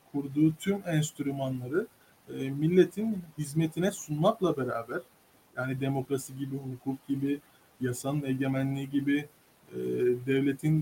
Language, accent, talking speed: Turkish, native, 100 wpm